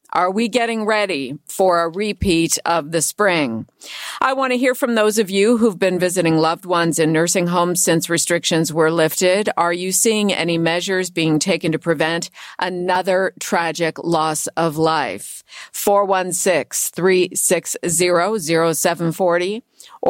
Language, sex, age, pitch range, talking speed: English, female, 50-69, 160-195 Hz, 135 wpm